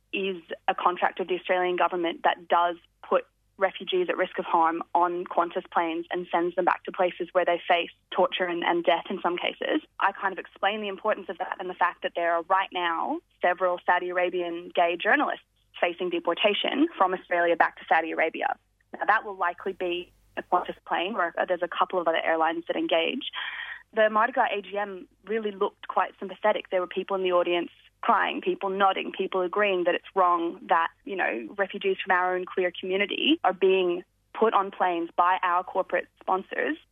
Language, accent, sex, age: English, Australian, female, 20-39